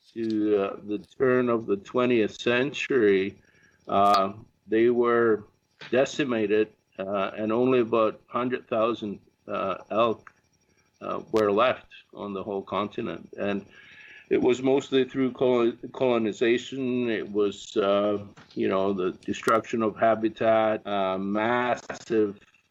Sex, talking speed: male, 110 wpm